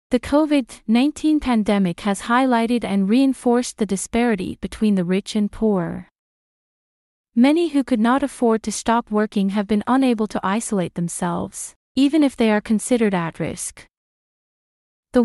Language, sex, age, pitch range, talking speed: English, female, 30-49, 200-250 Hz, 140 wpm